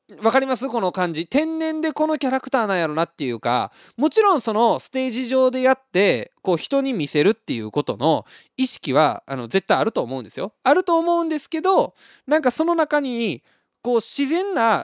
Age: 20-39